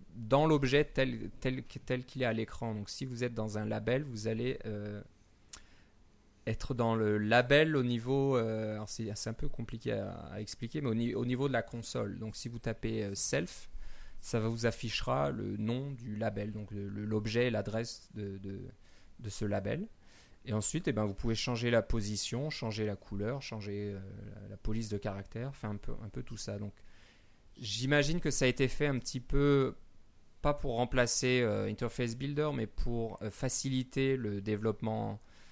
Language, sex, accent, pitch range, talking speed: French, male, French, 105-125 Hz, 195 wpm